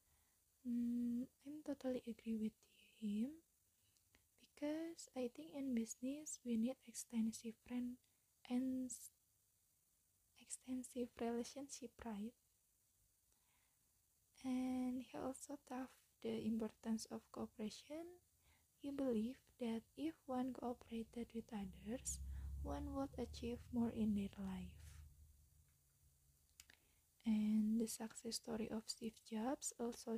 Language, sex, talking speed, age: English, female, 100 wpm, 20-39